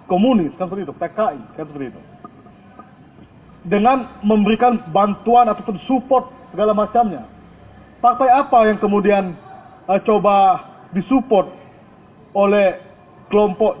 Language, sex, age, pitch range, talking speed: Indonesian, male, 30-49, 195-235 Hz, 105 wpm